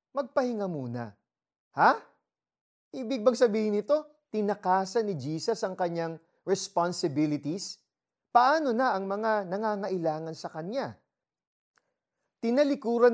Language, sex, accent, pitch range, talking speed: Filipino, male, native, 155-225 Hz, 95 wpm